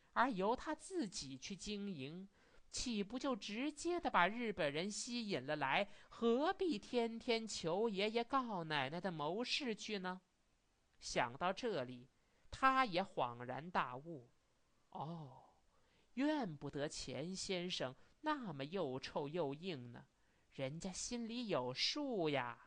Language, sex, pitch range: Chinese, male, 140-230 Hz